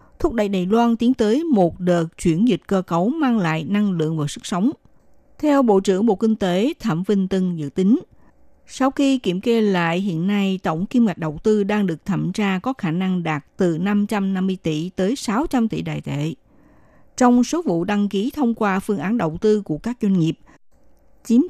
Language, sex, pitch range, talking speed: Vietnamese, female, 170-230 Hz, 205 wpm